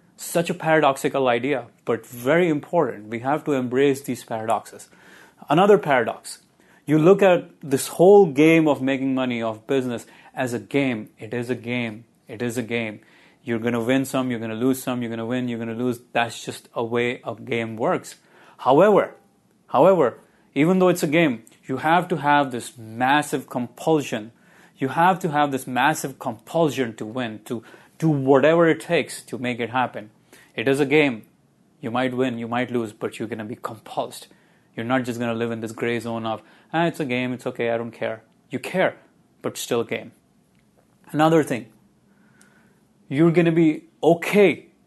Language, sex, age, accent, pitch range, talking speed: English, male, 30-49, Indian, 120-165 Hz, 190 wpm